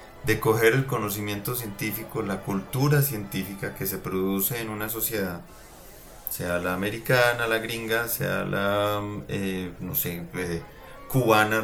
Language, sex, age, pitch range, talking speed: Spanish, male, 30-49, 100-125 Hz, 135 wpm